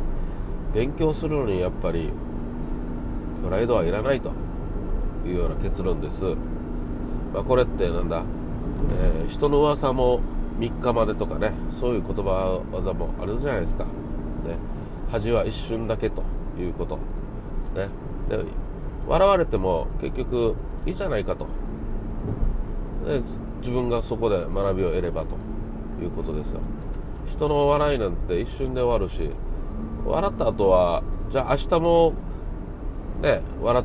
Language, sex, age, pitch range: Japanese, male, 40-59, 80-120 Hz